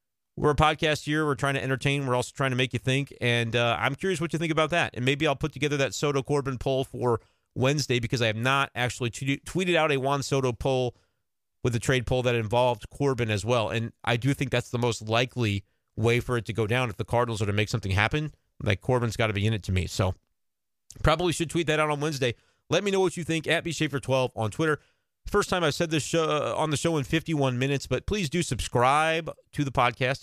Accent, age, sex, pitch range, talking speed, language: American, 30-49, male, 120-155 Hz, 245 wpm, English